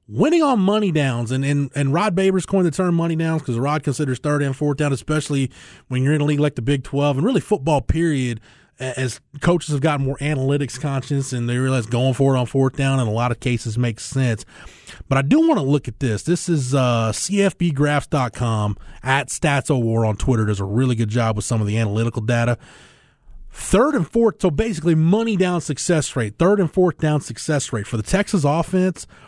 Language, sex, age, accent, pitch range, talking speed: English, male, 30-49, American, 120-155 Hz, 210 wpm